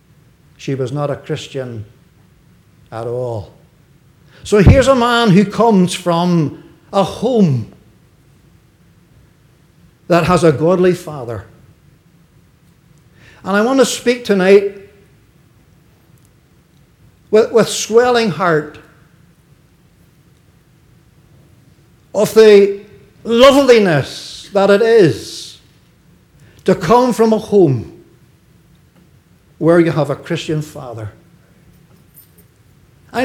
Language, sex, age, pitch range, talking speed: English, male, 60-79, 150-210 Hz, 90 wpm